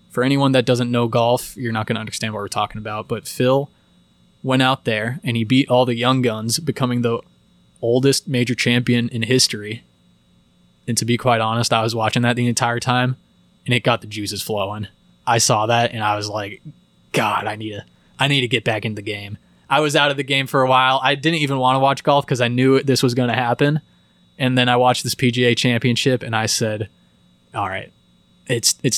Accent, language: American, English